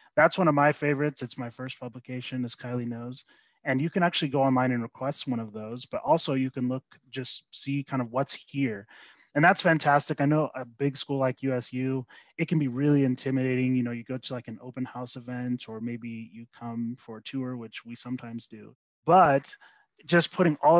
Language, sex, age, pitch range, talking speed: English, male, 20-39, 120-135 Hz, 215 wpm